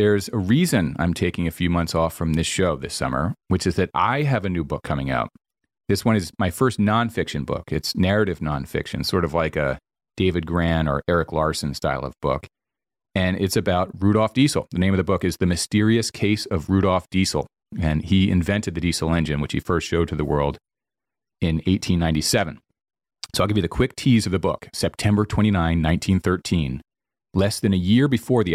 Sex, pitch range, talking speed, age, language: male, 85-100 Hz, 205 wpm, 40-59, English